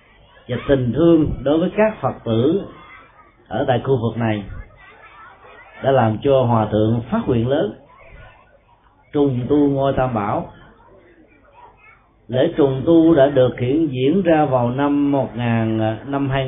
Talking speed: 135 wpm